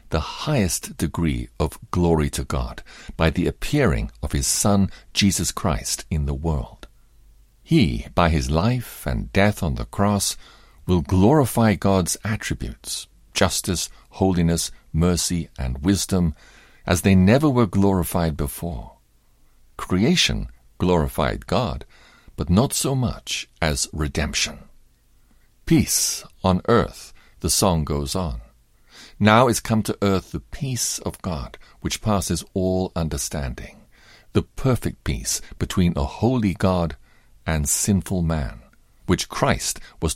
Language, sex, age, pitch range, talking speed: English, male, 50-69, 80-105 Hz, 125 wpm